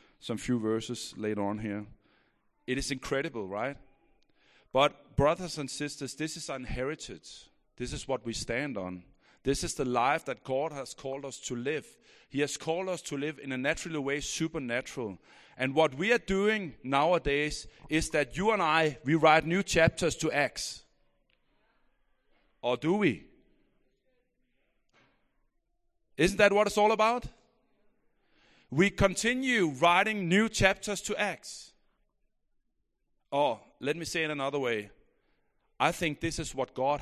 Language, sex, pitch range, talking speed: English, male, 125-180 Hz, 150 wpm